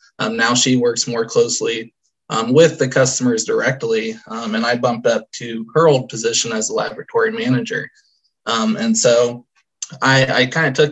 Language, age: English, 20-39